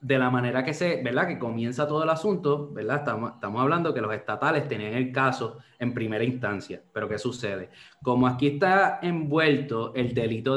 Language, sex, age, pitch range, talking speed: English, male, 20-39, 115-150 Hz, 190 wpm